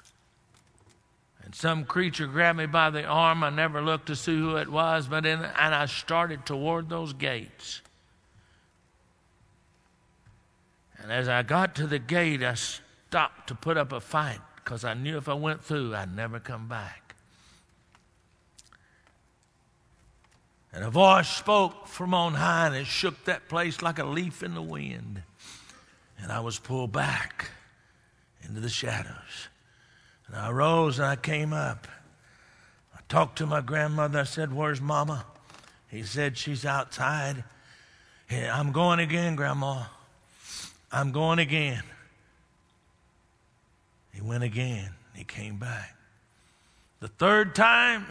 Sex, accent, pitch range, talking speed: male, American, 115-165 Hz, 135 wpm